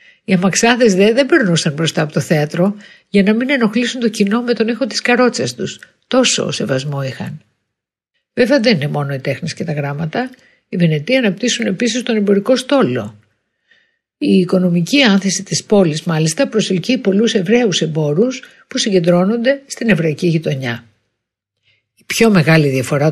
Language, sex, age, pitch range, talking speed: Greek, female, 60-79, 155-230 Hz, 155 wpm